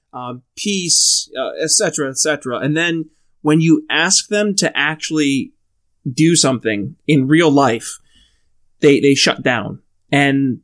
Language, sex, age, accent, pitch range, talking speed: English, male, 20-39, American, 130-160 Hz, 145 wpm